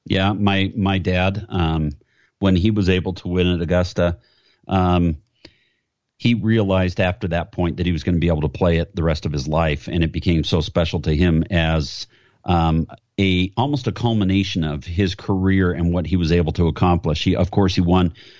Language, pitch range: English, 85-100 Hz